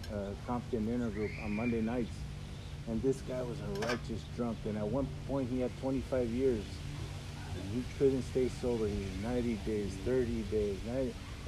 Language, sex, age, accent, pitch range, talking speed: English, male, 50-69, American, 110-140 Hz, 180 wpm